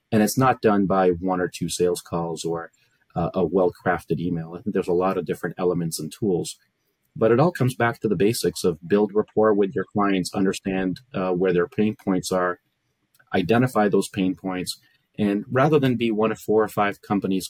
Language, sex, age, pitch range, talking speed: English, male, 30-49, 95-115 Hz, 205 wpm